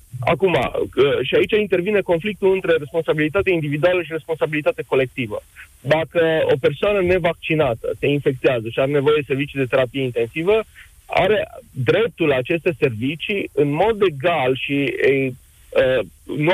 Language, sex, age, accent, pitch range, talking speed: Romanian, male, 30-49, native, 145-190 Hz, 130 wpm